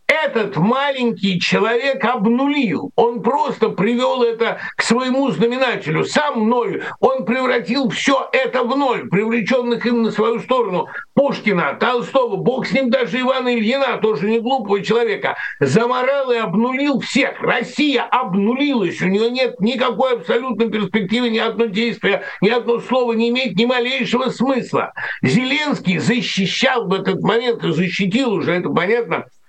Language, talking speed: Russian, 140 wpm